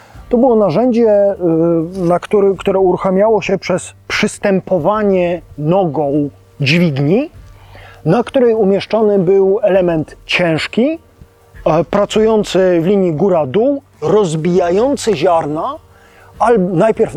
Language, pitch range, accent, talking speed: Polish, 145-185 Hz, native, 80 wpm